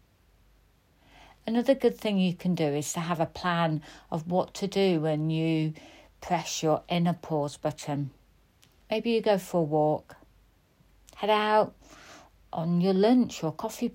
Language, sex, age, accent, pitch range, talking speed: English, female, 60-79, British, 145-195 Hz, 150 wpm